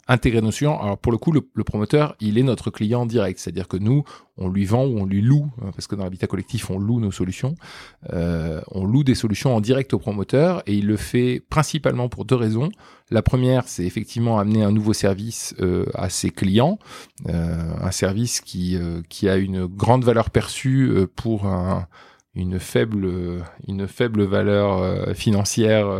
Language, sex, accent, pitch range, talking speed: French, male, French, 95-125 Hz, 200 wpm